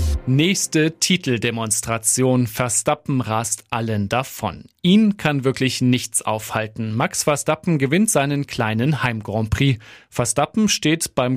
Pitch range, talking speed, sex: 120-155 Hz, 115 wpm, male